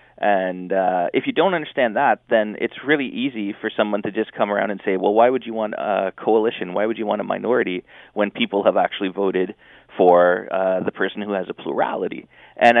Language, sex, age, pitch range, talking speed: English, male, 30-49, 100-125 Hz, 215 wpm